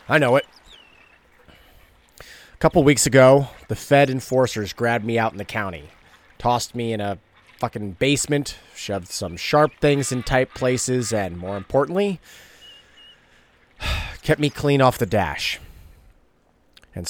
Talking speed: 135 wpm